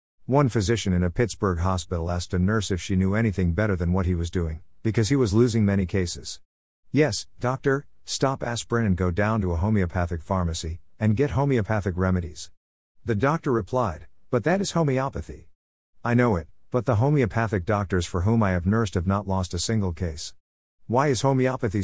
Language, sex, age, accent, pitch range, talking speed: English, male, 50-69, American, 90-115 Hz, 185 wpm